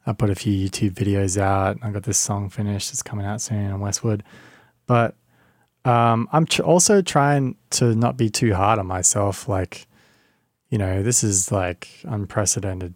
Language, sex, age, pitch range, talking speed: English, male, 20-39, 100-115 Hz, 175 wpm